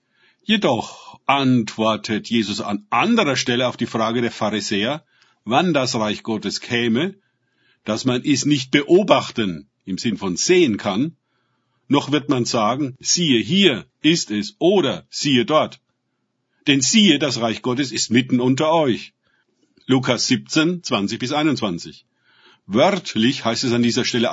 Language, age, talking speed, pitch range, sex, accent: German, 50-69, 135 wpm, 115-145 Hz, male, German